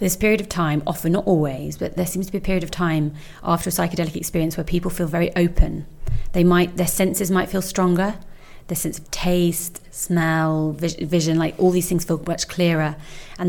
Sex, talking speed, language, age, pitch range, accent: female, 205 wpm, English, 30-49, 160-180 Hz, British